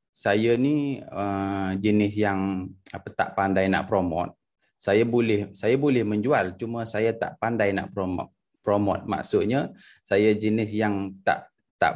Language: Malay